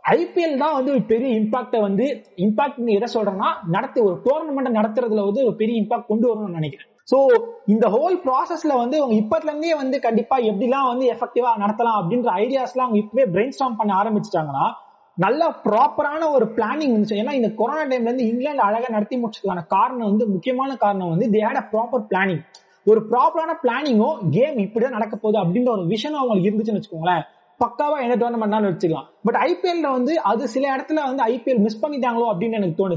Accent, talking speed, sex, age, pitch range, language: native, 155 wpm, male, 30-49, 205-255 Hz, Tamil